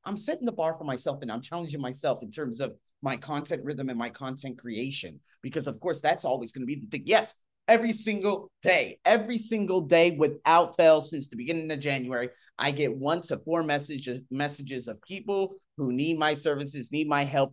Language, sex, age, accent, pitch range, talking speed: English, male, 30-49, American, 130-170 Hz, 205 wpm